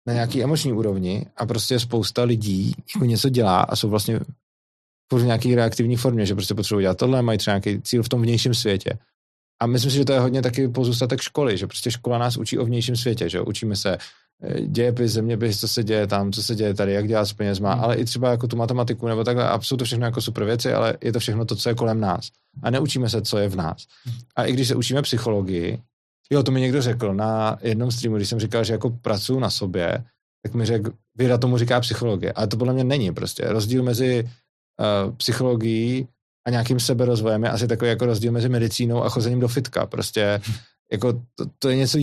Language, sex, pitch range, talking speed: Czech, male, 110-125 Hz, 225 wpm